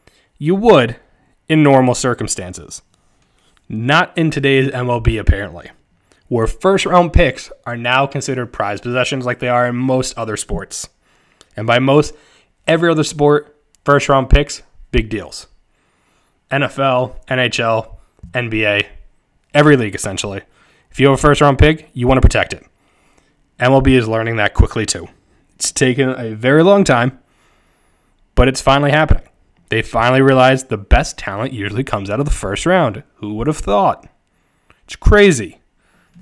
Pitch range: 105-140 Hz